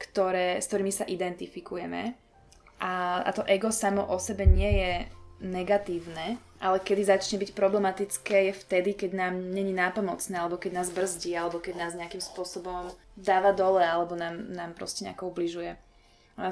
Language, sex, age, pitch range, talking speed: Slovak, female, 20-39, 180-195 Hz, 160 wpm